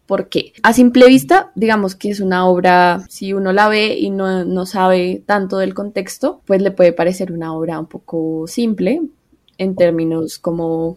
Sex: female